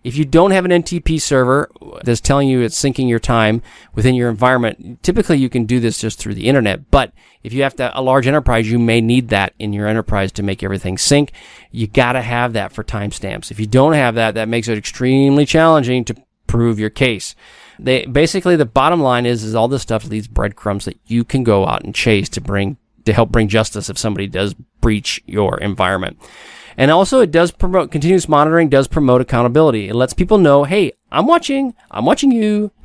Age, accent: 40-59, American